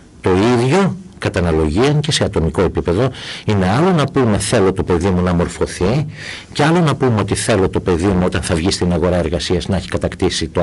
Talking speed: 205 wpm